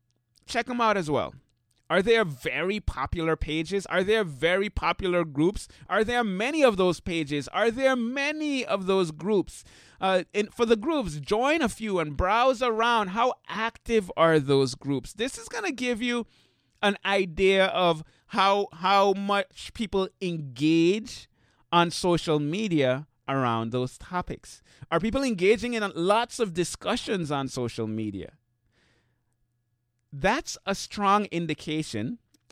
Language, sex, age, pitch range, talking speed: English, male, 30-49, 135-220 Hz, 140 wpm